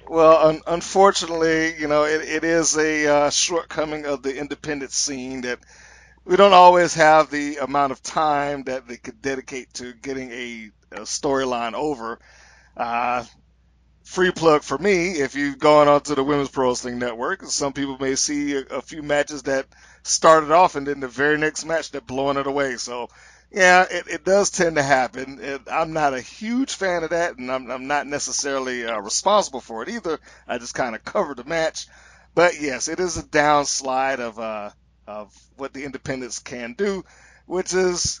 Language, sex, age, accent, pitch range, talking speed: English, male, 40-59, American, 130-160 Hz, 185 wpm